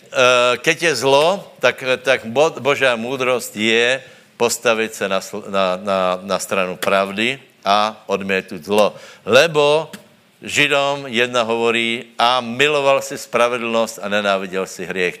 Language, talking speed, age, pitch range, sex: Slovak, 125 wpm, 60-79, 95-125 Hz, male